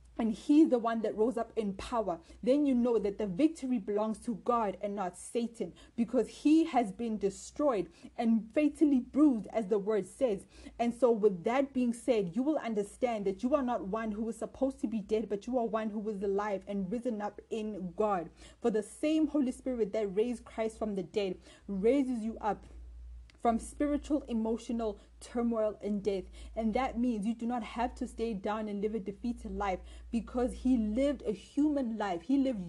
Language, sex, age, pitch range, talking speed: English, female, 20-39, 210-255 Hz, 200 wpm